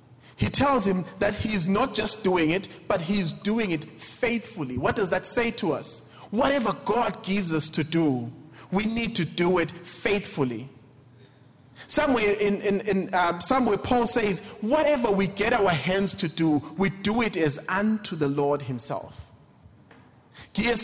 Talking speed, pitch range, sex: 165 wpm, 130-200 Hz, male